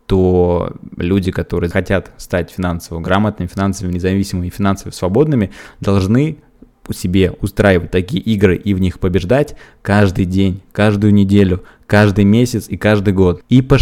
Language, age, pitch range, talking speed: Russian, 20-39, 95-110 Hz, 145 wpm